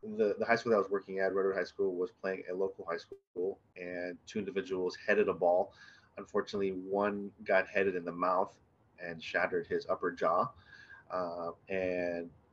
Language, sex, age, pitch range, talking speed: English, male, 20-39, 90-120 Hz, 175 wpm